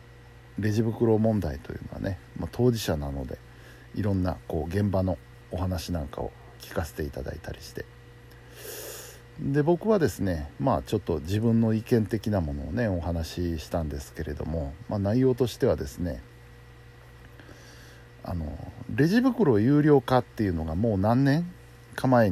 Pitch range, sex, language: 80-120 Hz, male, Japanese